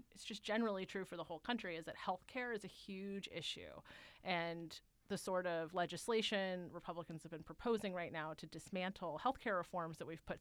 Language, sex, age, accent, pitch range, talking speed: English, female, 30-49, American, 170-210 Hz, 200 wpm